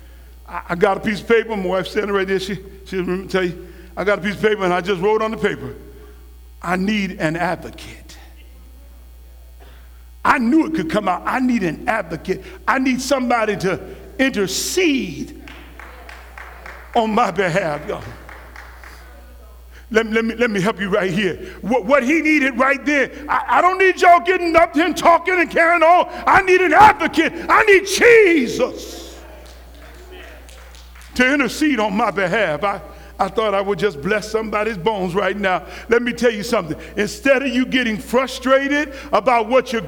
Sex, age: male, 50-69